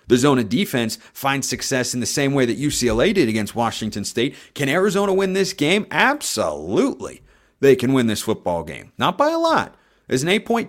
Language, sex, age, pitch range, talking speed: English, male, 30-49, 105-170 Hz, 195 wpm